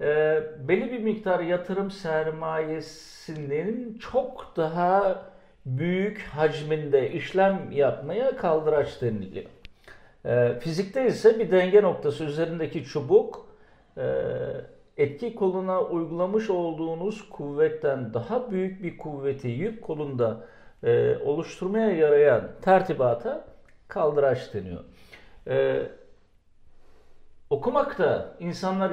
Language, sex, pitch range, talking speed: Turkish, male, 120-195 Hz, 90 wpm